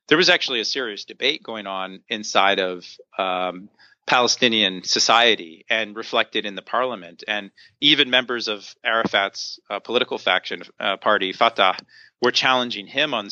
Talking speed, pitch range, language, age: 150 wpm, 100-120 Hz, English, 40-59